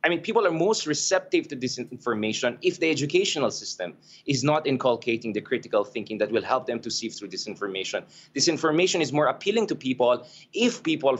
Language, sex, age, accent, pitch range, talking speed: English, male, 20-39, Filipino, 125-155 Hz, 195 wpm